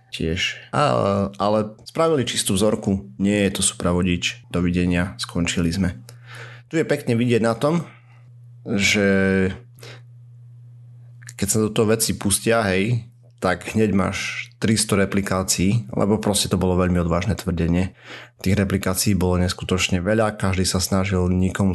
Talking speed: 130 wpm